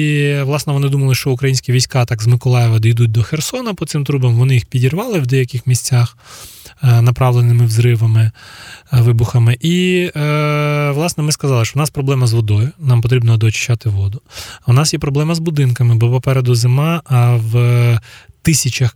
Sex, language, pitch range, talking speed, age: male, Ukrainian, 115-140 Hz, 160 wpm, 20-39